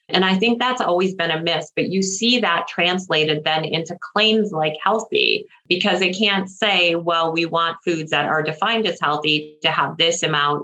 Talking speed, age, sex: 195 wpm, 30-49, female